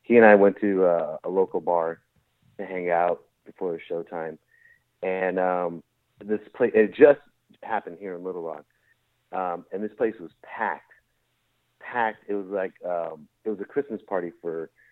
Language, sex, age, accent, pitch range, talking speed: English, male, 40-59, American, 95-115 Hz, 175 wpm